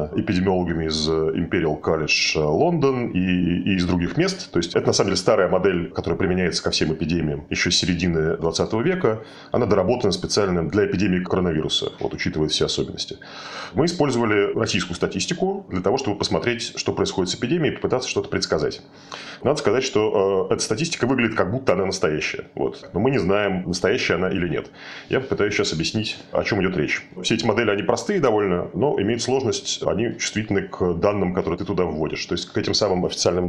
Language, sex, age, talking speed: Russian, male, 30-49, 185 wpm